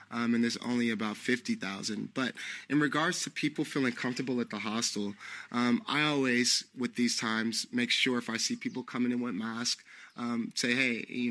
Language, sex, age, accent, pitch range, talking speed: English, male, 20-39, American, 115-130 Hz, 190 wpm